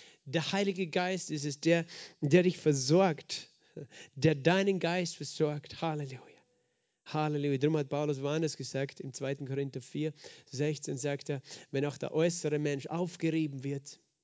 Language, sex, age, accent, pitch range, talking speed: German, male, 40-59, German, 145-170 Hz, 145 wpm